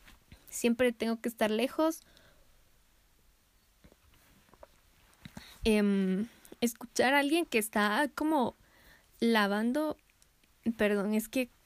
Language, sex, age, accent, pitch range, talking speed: Spanish, female, 10-29, Mexican, 210-250 Hz, 80 wpm